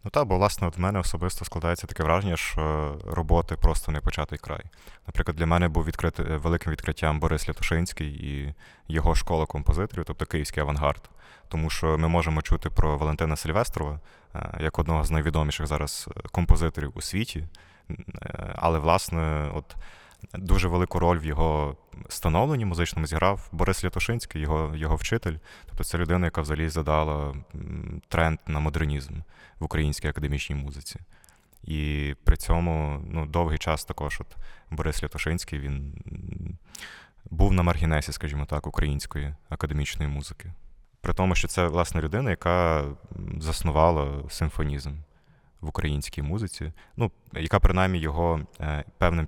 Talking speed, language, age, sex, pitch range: 140 wpm, Ukrainian, 20-39, male, 75-90 Hz